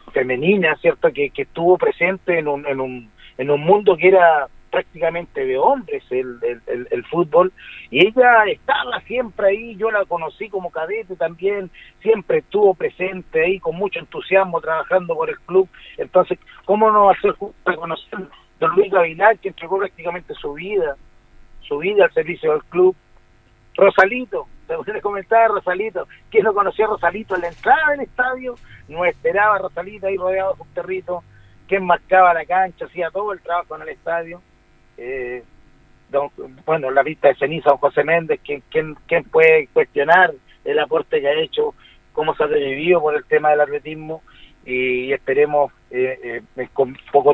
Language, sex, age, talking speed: Spanish, male, 50-69, 165 wpm